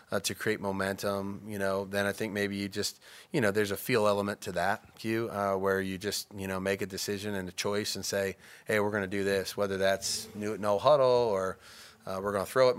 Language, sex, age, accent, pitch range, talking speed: English, male, 20-39, American, 95-105 Hz, 250 wpm